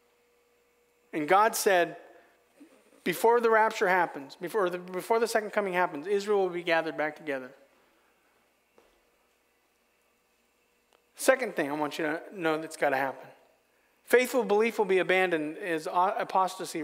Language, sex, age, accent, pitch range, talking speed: English, male, 40-59, American, 165-220 Hz, 135 wpm